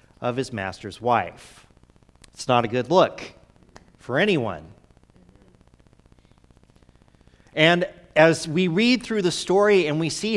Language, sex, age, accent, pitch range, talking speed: English, male, 40-59, American, 125-170 Hz, 120 wpm